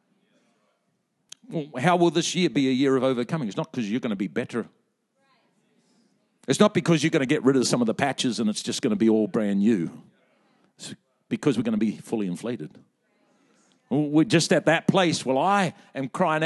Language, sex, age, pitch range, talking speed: English, male, 50-69, 160-215 Hz, 205 wpm